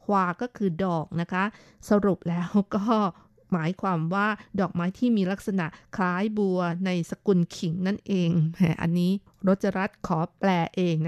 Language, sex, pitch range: Thai, female, 175-210 Hz